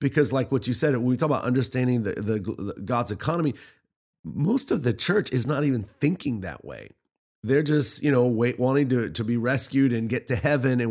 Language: English